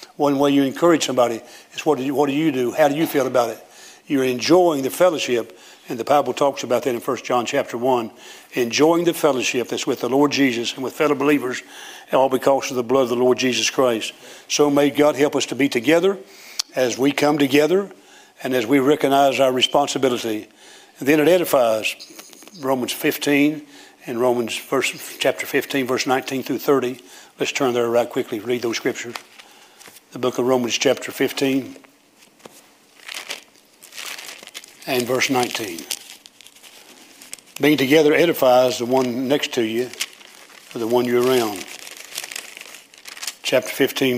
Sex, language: male, English